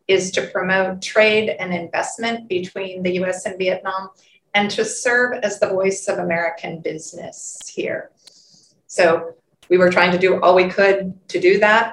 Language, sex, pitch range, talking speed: Vietnamese, female, 175-200 Hz, 165 wpm